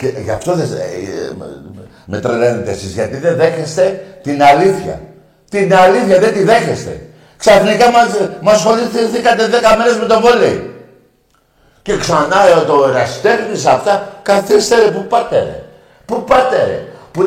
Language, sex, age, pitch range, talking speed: Greek, male, 60-79, 180-235 Hz, 120 wpm